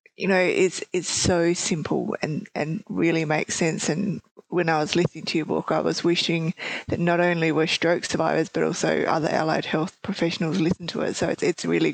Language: English